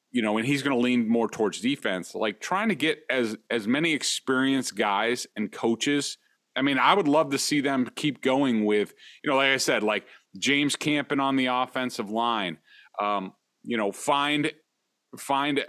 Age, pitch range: 40-59, 125-165 Hz